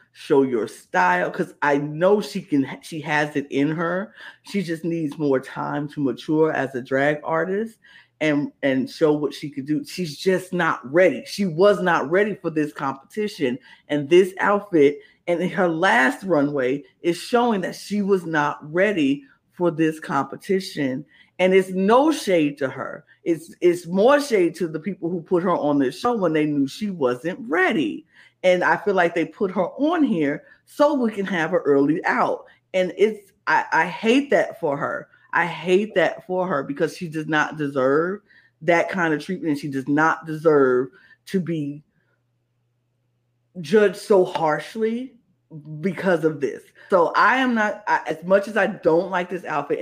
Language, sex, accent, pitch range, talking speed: English, female, American, 150-195 Hz, 175 wpm